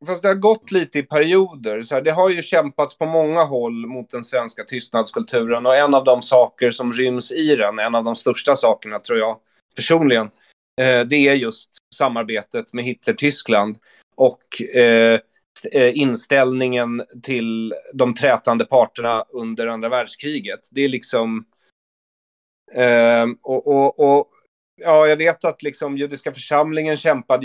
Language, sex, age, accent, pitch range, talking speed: Swedish, male, 30-49, native, 115-145 Hz, 140 wpm